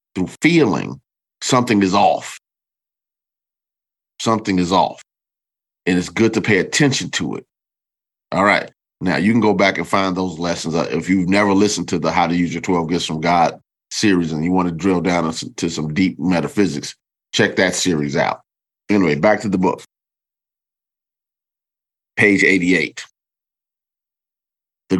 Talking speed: 155 wpm